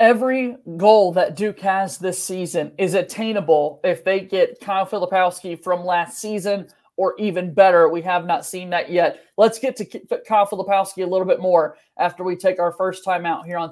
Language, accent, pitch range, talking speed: English, American, 190-240 Hz, 195 wpm